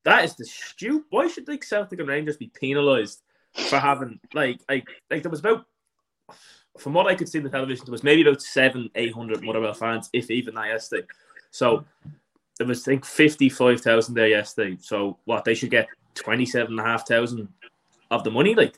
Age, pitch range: 20-39, 120-165 Hz